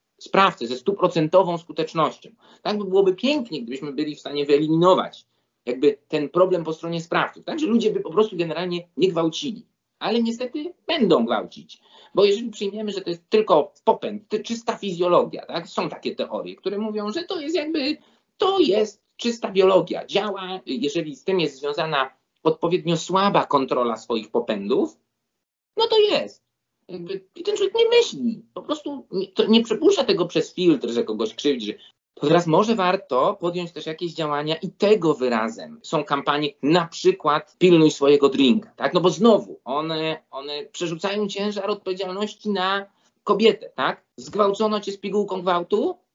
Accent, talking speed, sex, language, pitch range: native, 155 wpm, male, Polish, 170-230 Hz